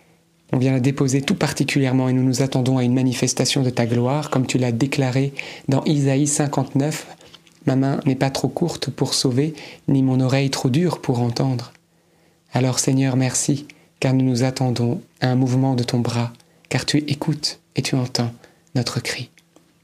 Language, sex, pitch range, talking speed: French, male, 130-155 Hz, 180 wpm